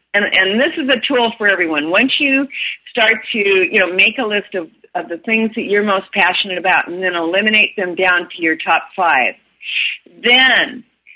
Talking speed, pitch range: 195 wpm, 175-240 Hz